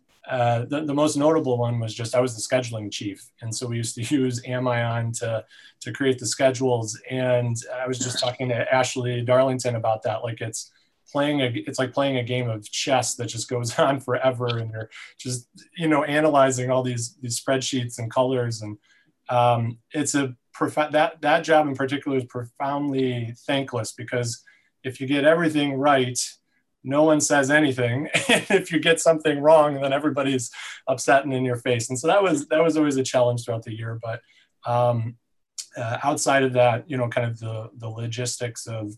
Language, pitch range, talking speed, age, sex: English, 115-135 Hz, 190 wpm, 30-49, male